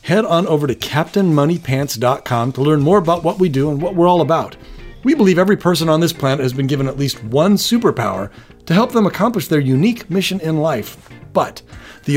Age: 40-59